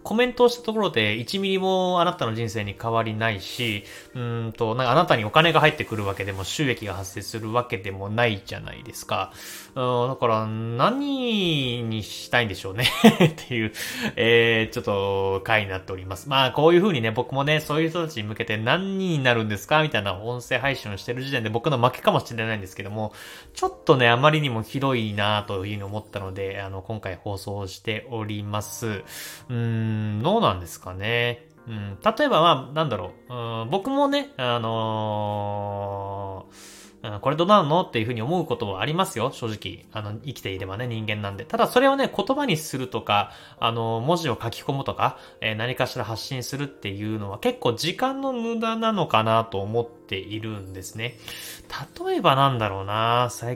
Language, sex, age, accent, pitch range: Japanese, male, 20-39, native, 105-150 Hz